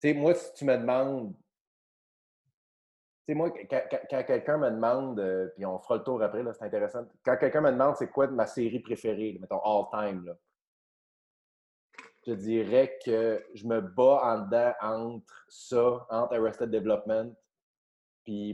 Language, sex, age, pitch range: French, male, 30-49, 105-130 Hz